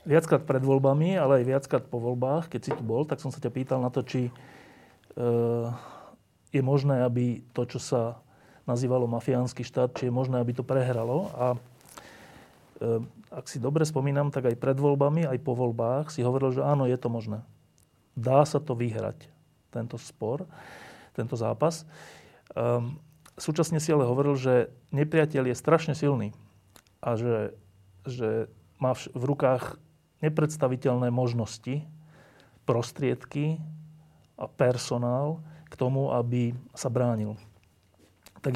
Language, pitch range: Slovak, 120-140 Hz